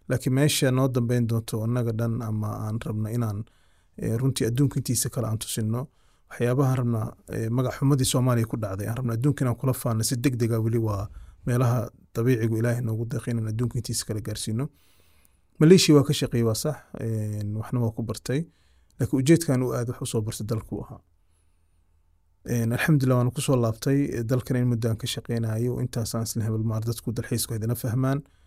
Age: 30-49